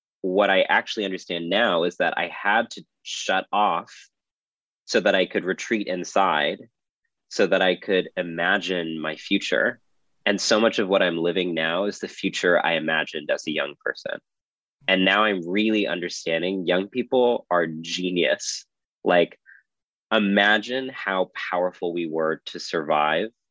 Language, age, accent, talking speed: English, 20-39, American, 150 wpm